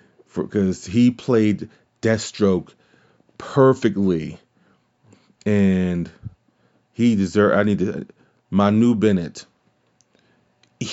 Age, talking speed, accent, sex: 30-49, 75 wpm, American, male